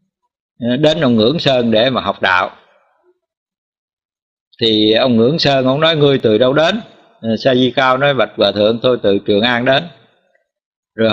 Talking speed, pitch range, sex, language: 165 wpm, 125-185 Hz, male, Vietnamese